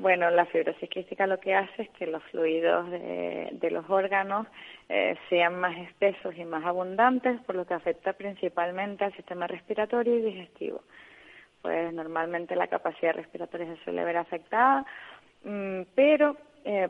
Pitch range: 160-200 Hz